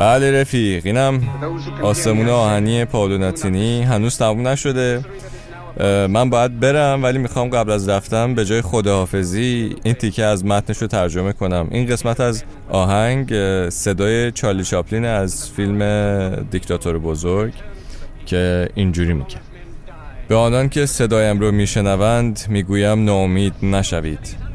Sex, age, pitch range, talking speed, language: male, 20-39, 95-110 Hz, 120 wpm, Persian